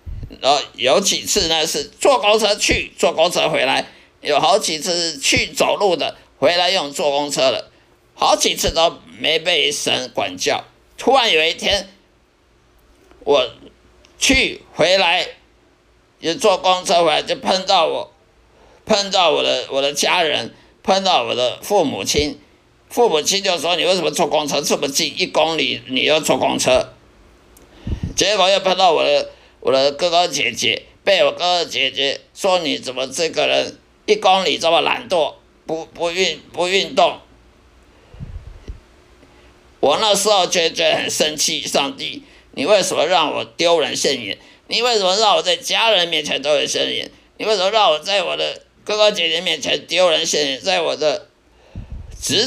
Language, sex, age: Chinese, male, 50-69